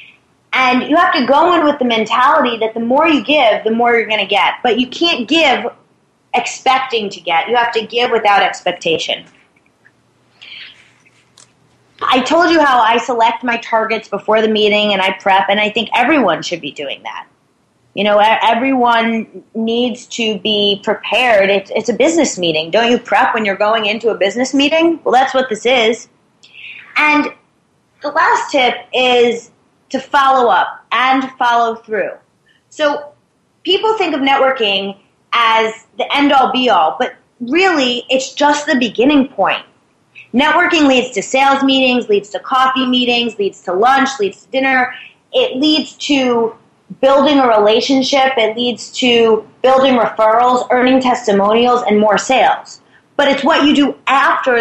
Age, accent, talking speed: 30-49, American, 160 wpm